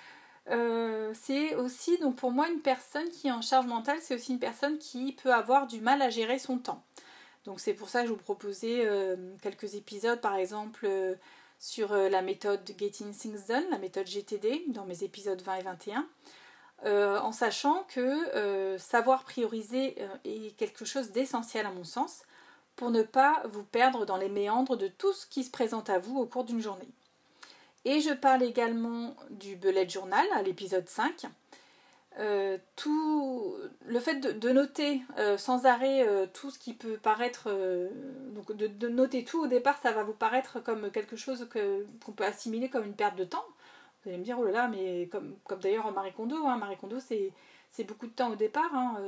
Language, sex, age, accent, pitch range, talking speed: French, female, 30-49, French, 205-270 Hz, 200 wpm